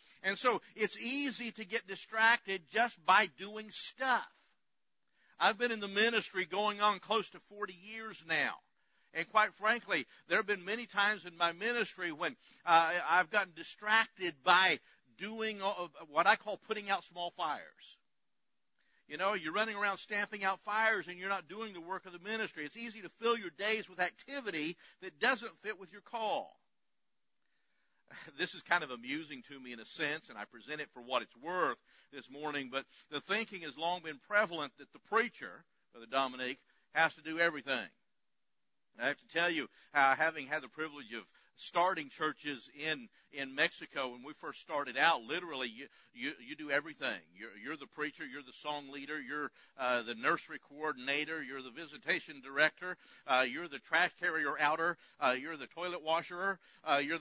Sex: male